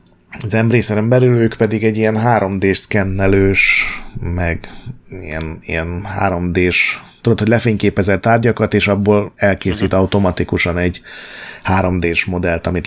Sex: male